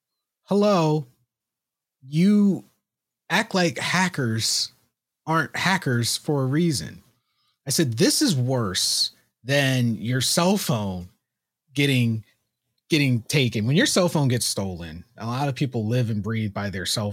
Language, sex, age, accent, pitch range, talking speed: English, male, 30-49, American, 115-165 Hz, 135 wpm